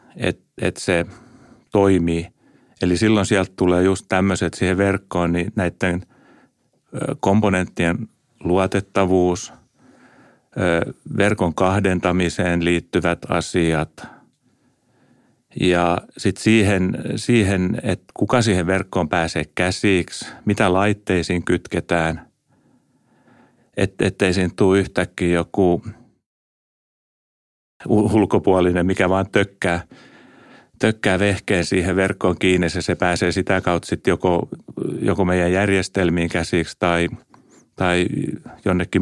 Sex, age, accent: male, 40-59, native